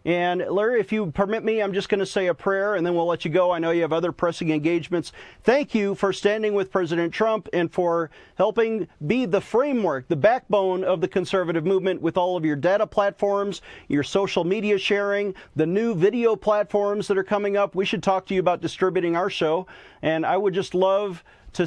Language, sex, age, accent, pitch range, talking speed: English, male, 40-59, American, 170-205 Hz, 215 wpm